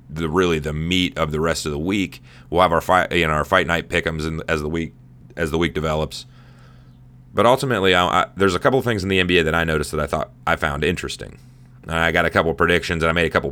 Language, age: English, 30-49